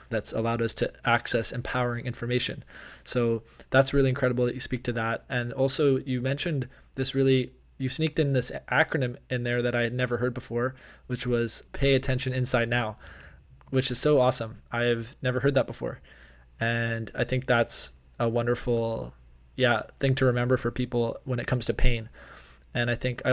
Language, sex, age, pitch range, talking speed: English, male, 20-39, 115-130 Hz, 185 wpm